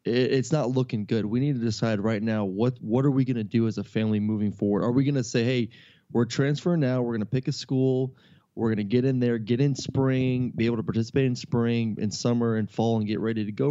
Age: 20-39